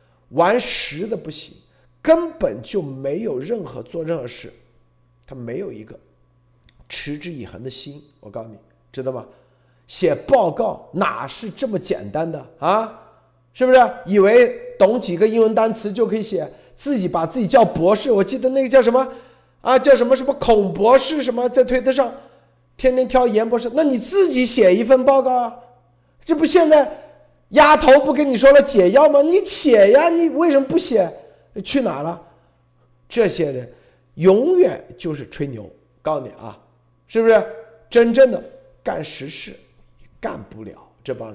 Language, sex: Chinese, male